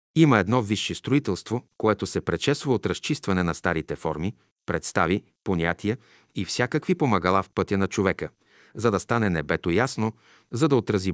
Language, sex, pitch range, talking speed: Bulgarian, male, 95-130 Hz, 155 wpm